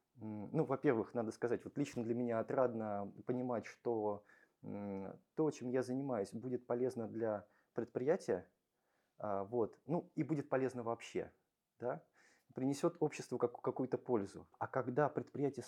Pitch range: 115-130 Hz